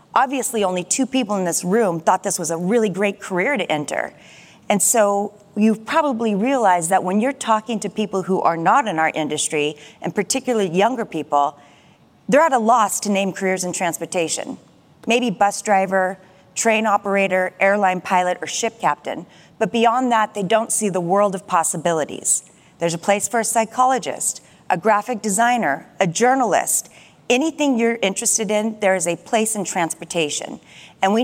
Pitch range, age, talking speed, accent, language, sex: 180-225 Hz, 30-49, 170 wpm, American, English, female